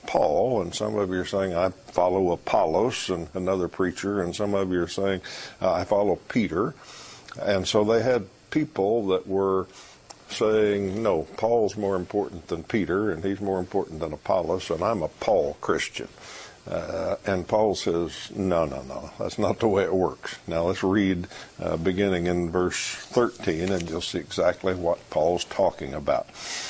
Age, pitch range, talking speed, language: 60-79, 90-115 Hz, 170 wpm, English